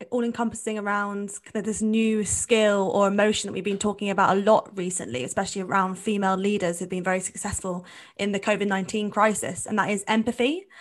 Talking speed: 180 wpm